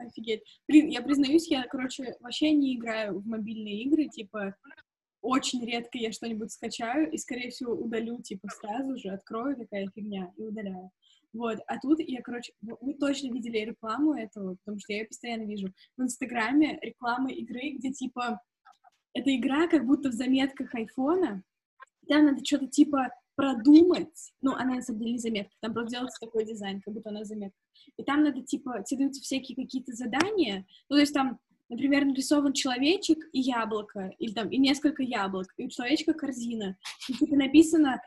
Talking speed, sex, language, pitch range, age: 170 wpm, female, Russian, 225-290 Hz, 10-29